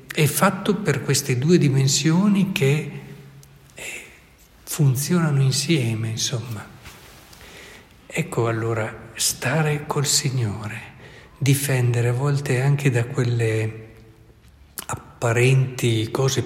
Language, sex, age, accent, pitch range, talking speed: Italian, male, 60-79, native, 115-140 Hz, 85 wpm